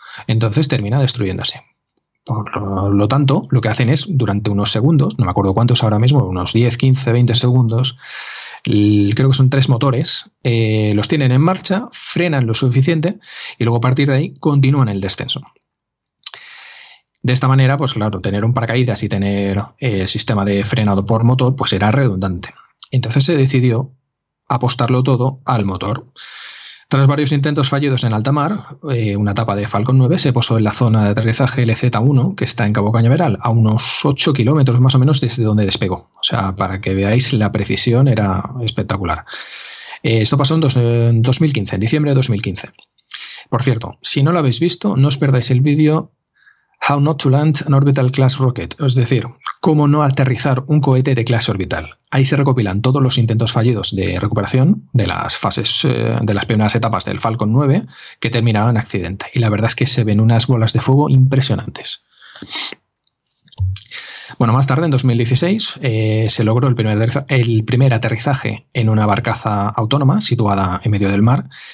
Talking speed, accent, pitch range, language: 180 wpm, Spanish, 110-135 Hz, Spanish